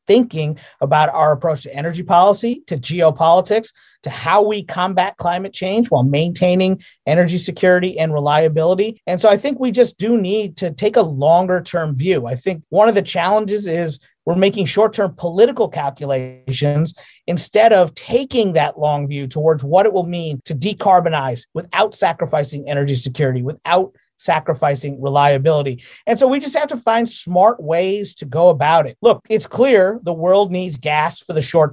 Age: 30-49